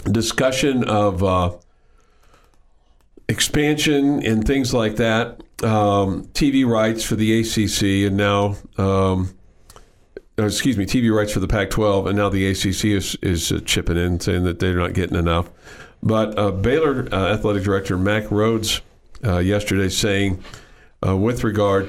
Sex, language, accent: male, English, American